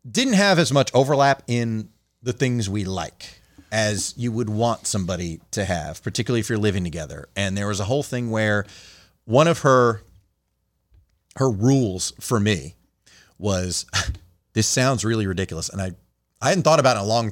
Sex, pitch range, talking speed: male, 95-125 Hz, 175 wpm